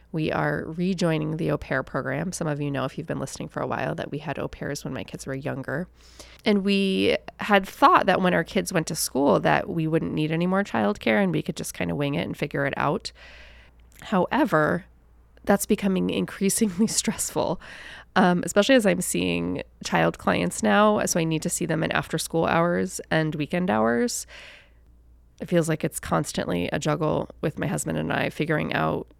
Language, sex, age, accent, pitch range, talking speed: English, female, 20-39, American, 150-195 Hz, 200 wpm